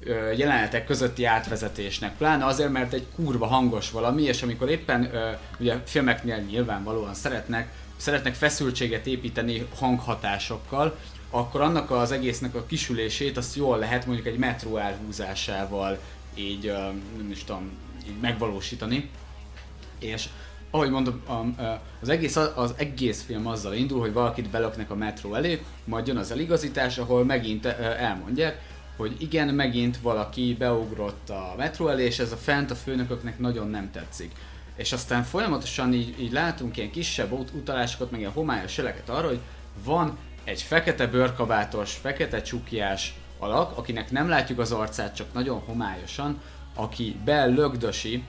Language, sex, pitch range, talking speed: Hungarian, male, 105-125 Hz, 140 wpm